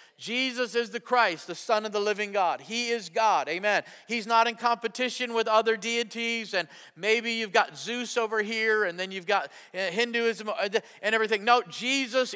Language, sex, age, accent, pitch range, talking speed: English, male, 40-59, American, 190-240 Hz, 180 wpm